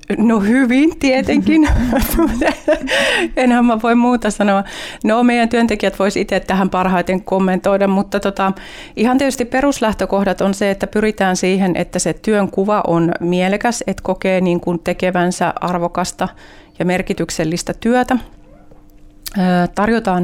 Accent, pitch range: native, 185-230 Hz